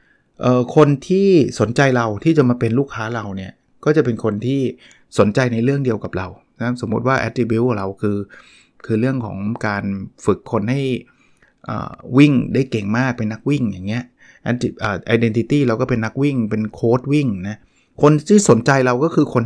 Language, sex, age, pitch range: Thai, male, 20-39, 110-140 Hz